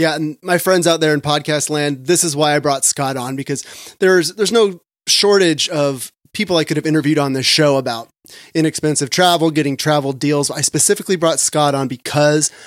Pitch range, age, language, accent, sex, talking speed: 140-165 Hz, 30-49, English, American, male, 200 wpm